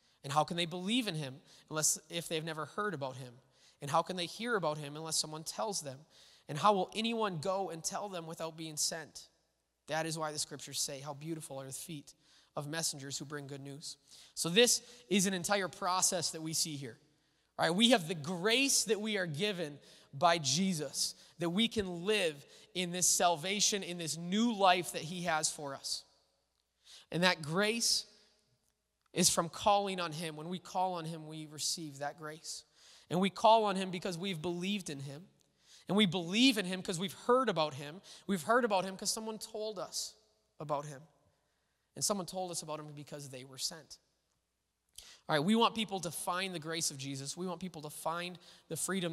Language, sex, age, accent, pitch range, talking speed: English, male, 20-39, American, 150-200 Hz, 200 wpm